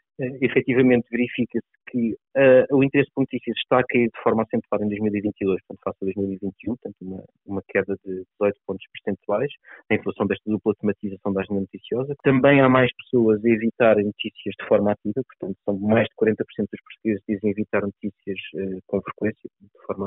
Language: Portuguese